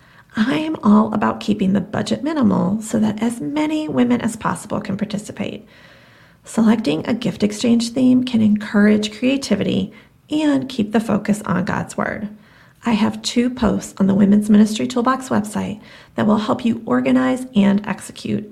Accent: American